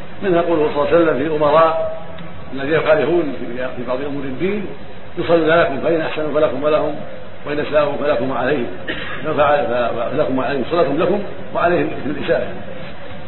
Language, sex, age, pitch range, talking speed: Arabic, male, 50-69, 145-165 Hz, 135 wpm